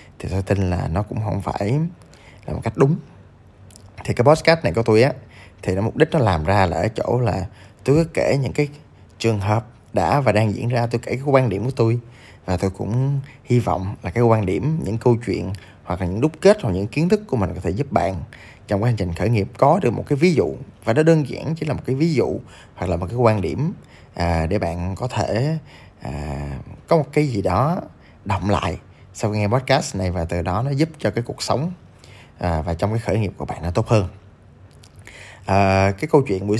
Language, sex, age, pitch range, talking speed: Vietnamese, male, 20-39, 95-125 Hz, 240 wpm